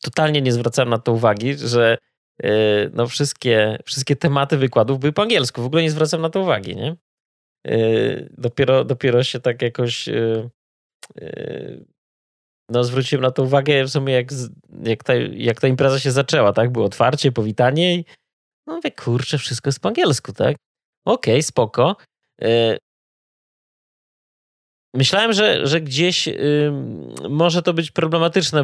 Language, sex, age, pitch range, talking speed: Polish, male, 20-39, 115-150 Hz, 155 wpm